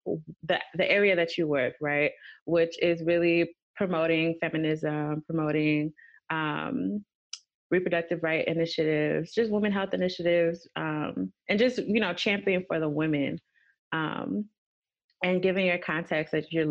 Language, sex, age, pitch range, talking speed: English, female, 20-39, 155-185 Hz, 135 wpm